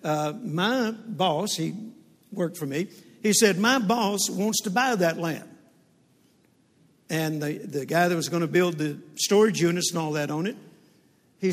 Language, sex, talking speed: English, male, 175 wpm